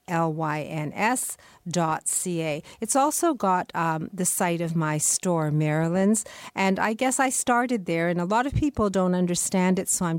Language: English